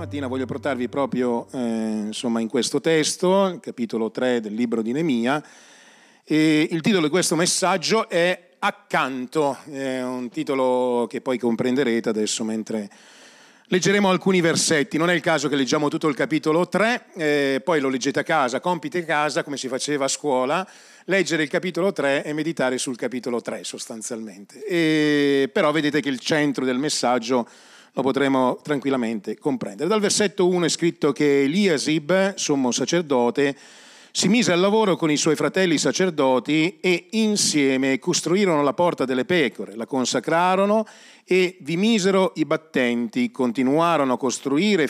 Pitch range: 130-180 Hz